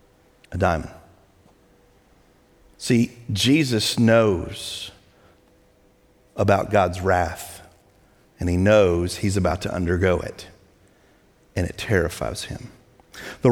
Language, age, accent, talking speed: English, 50-69, American, 95 wpm